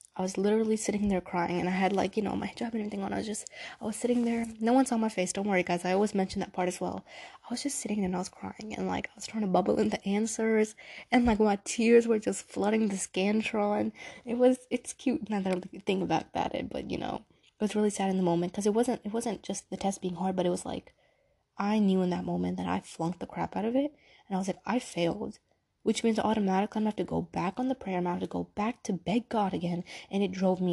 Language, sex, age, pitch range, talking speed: English, female, 20-39, 185-215 Hz, 280 wpm